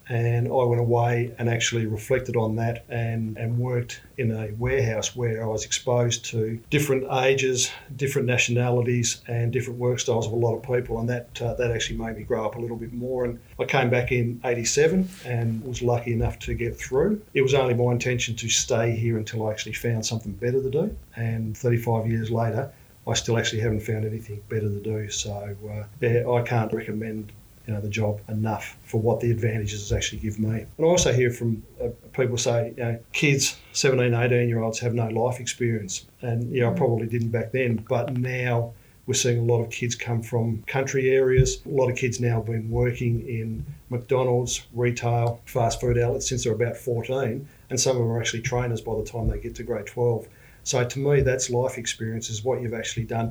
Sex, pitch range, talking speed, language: male, 115-125 Hz, 210 wpm, English